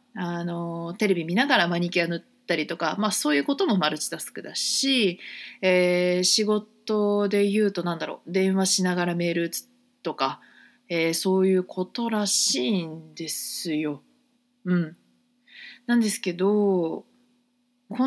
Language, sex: Japanese, female